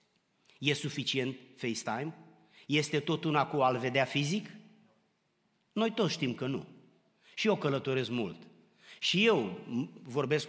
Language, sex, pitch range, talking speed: Romanian, male, 135-185 Hz, 125 wpm